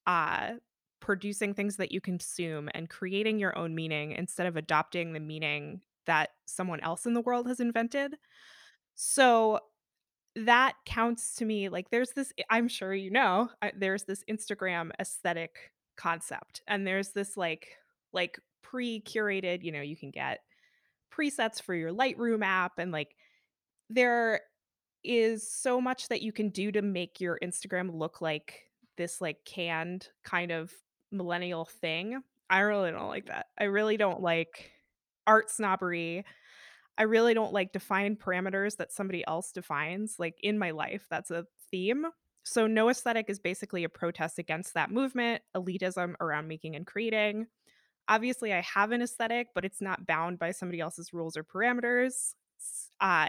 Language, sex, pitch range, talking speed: English, female, 170-225 Hz, 155 wpm